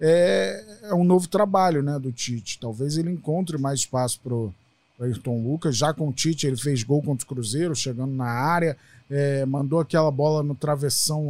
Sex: male